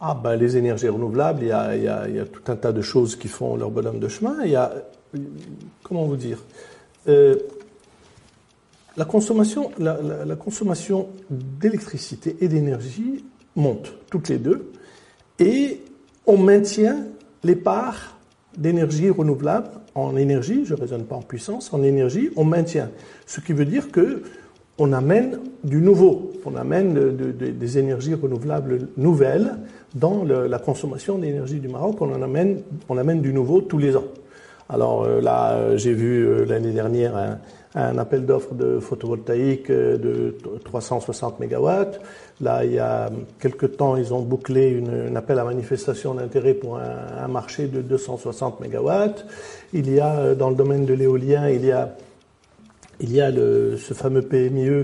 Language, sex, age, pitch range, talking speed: French, male, 50-69, 125-195 Hz, 150 wpm